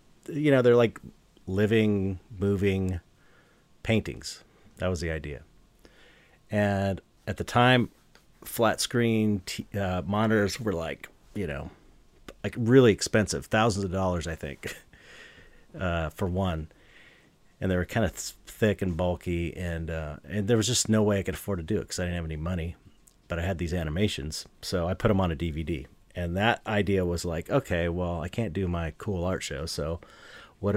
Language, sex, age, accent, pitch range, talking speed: English, male, 40-59, American, 85-105 Hz, 180 wpm